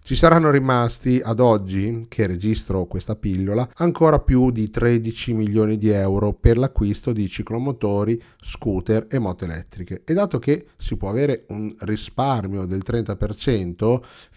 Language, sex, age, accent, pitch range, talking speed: Italian, male, 30-49, native, 105-130 Hz, 140 wpm